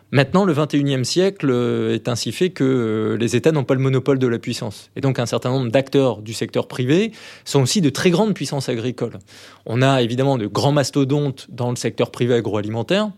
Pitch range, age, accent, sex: 120-145 Hz, 20-39, French, male